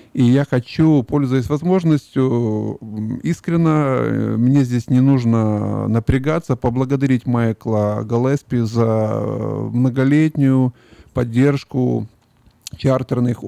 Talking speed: 80 wpm